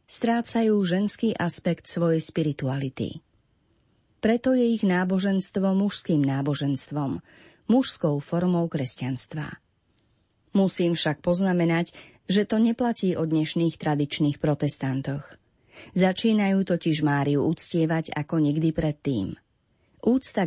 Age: 30-49